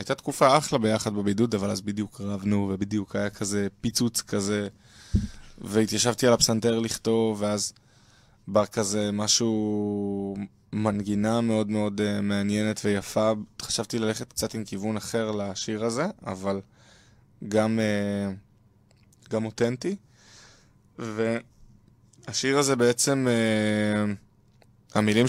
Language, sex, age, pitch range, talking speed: Hebrew, male, 20-39, 105-120 Hz, 110 wpm